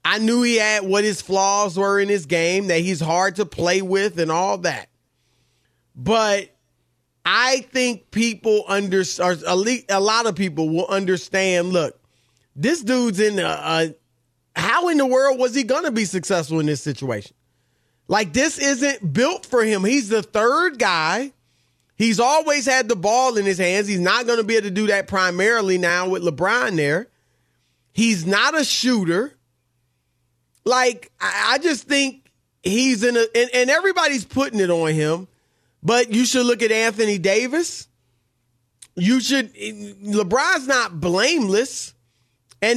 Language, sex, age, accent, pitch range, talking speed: English, male, 30-49, American, 170-240 Hz, 155 wpm